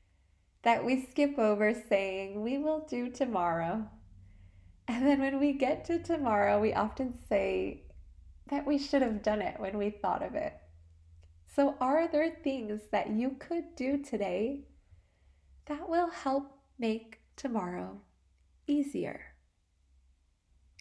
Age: 20-39